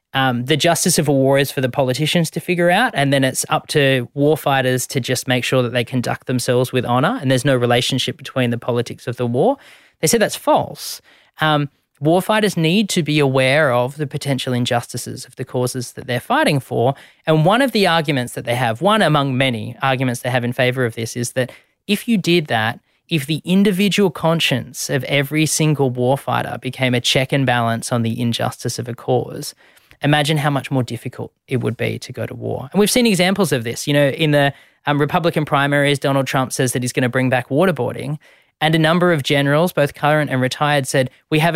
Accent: Australian